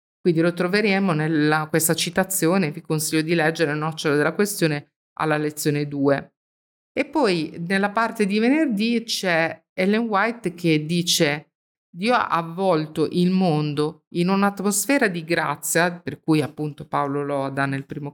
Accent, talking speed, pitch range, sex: native, 150 wpm, 155-190 Hz, female